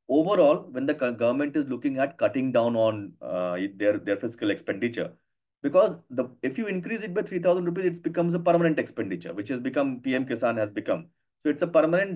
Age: 30-49